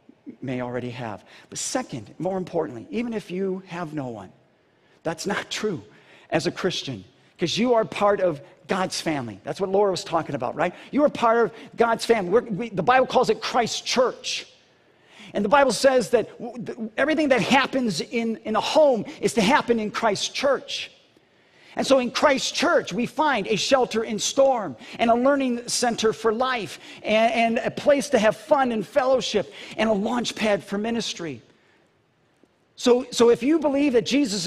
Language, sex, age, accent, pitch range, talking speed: English, male, 50-69, American, 185-250 Hz, 180 wpm